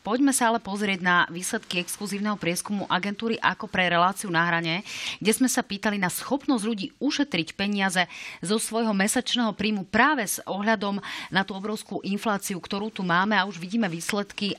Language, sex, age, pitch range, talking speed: Slovak, female, 30-49, 180-220 Hz, 170 wpm